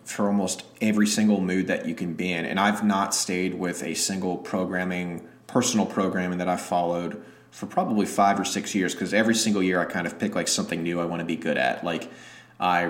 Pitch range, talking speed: 85-95 Hz, 225 wpm